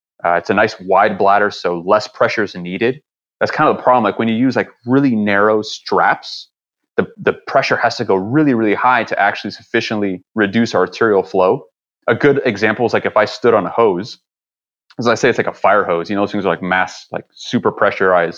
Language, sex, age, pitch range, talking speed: English, male, 30-49, 95-120 Hz, 220 wpm